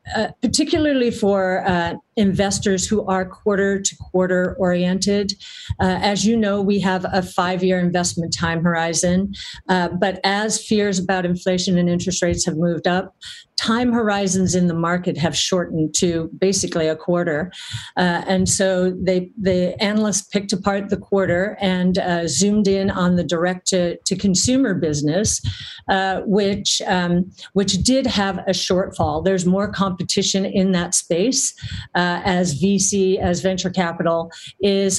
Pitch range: 175-205 Hz